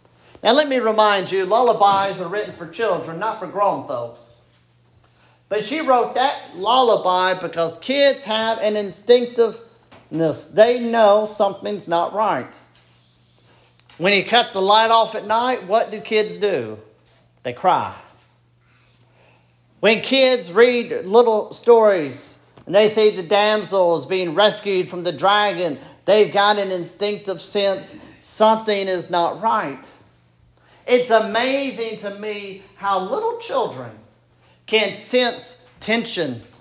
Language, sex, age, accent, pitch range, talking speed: English, male, 40-59, American, 160-220 Hz, 130 wpm